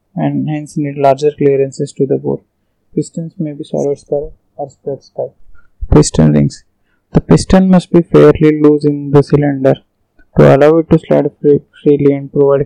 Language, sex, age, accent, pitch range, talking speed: English, male, 20-39, Indian, 135-150 Hz, 165 wpm